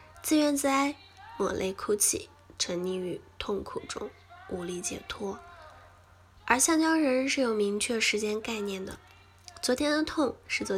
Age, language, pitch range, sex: 10-29, Chinese, 200-275 Hz, female